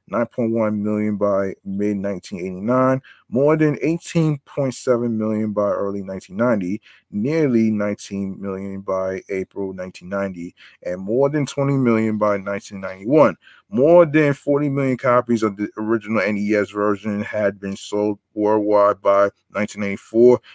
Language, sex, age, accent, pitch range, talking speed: English, male, 20-39, American, 100-120 Hz, 115 wpm